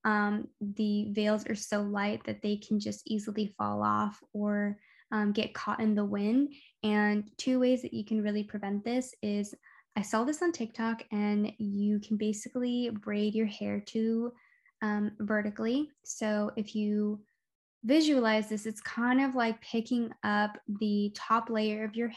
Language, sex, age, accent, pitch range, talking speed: English, female, 10-29, American, 210-235 Hz, 165 wpm